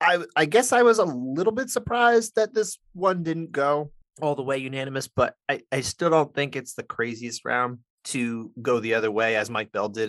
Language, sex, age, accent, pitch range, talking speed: English, male, 30-49, American, 115-165 Hz, 220 wpm